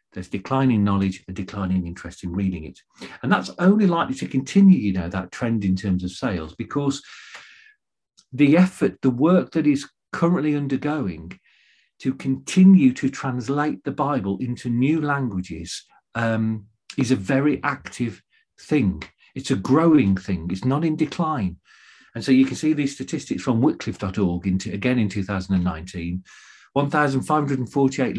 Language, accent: English, British